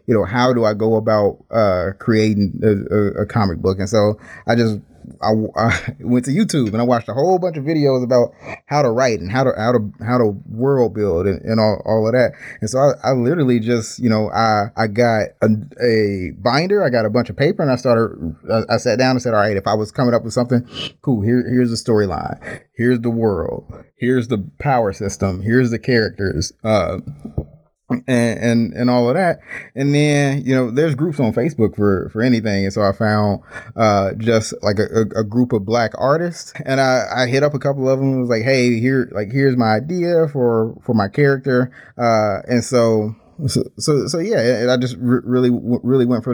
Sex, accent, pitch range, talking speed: male, American, 110-130 Hz, 220 wpm